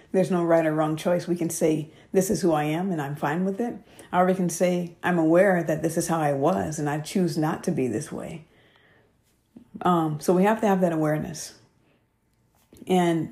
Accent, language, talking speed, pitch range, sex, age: American, English, 215 wpm, 155-180 Hz, female, 50-69